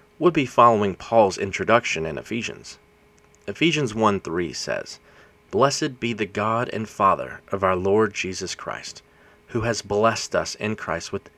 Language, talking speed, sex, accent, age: English, 155 wpm, male, American, 30-49